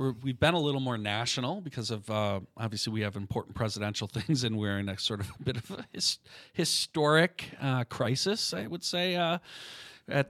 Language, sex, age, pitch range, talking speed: English, male, 40-59, 105-140 Hz, 205 wpm